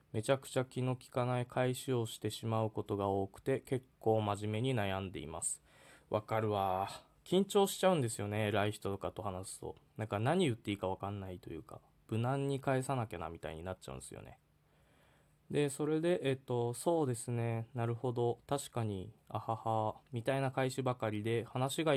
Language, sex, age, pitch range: Japanese, male, 20-39, 100-130 Hz